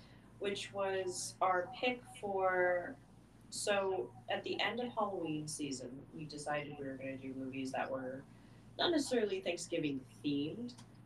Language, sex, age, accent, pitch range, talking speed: English, female, 30-49, American, 135-185 Hz, 140 wpm